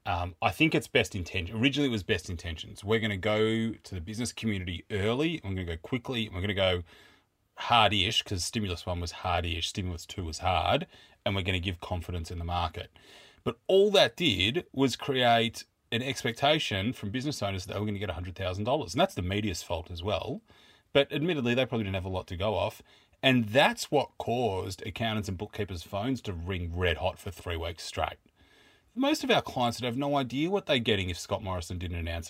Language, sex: English, male